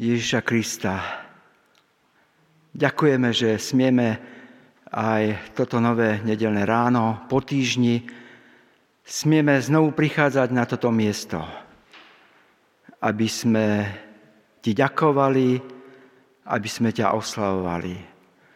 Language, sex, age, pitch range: Slovak, male, 50-69, 110-135 Hz